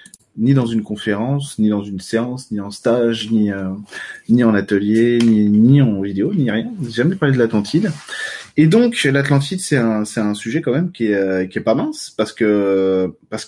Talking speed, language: 205 wpm, French